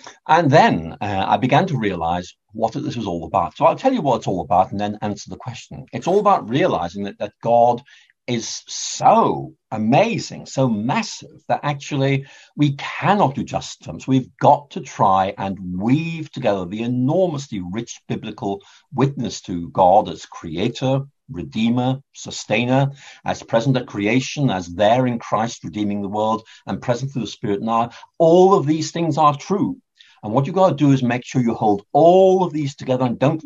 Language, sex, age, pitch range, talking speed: English, male, 50-69, 120-155 Hz, 185 wpm